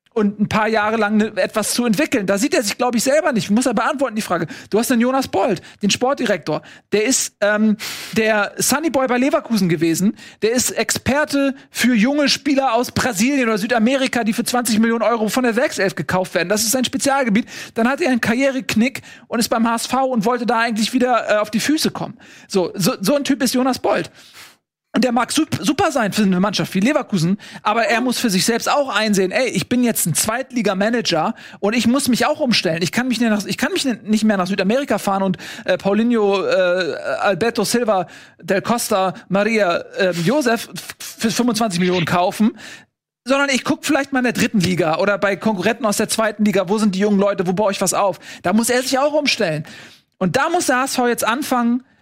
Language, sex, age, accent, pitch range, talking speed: German, male, 40-59, German, 200-255 Hz, 215 wpm